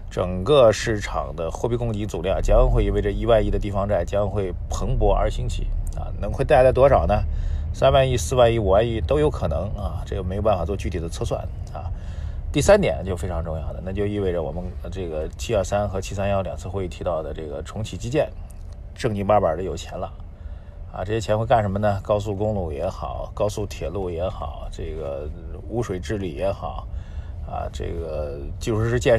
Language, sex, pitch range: Chinese, male, 85-105 Hz